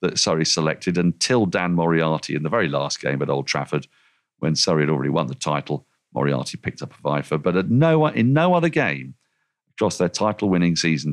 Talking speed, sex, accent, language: 190 wpm, male, British, English